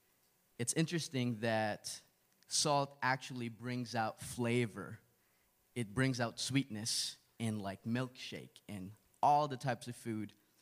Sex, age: male, 20-39